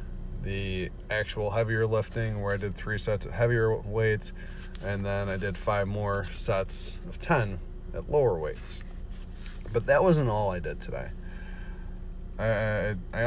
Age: 30-49